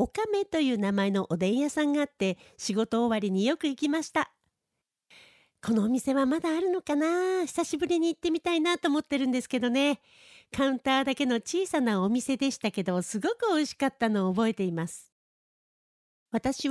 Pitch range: 230-320 Hz